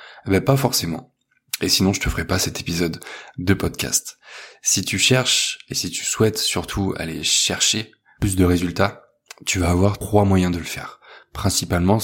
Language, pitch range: French, 95-110 Hz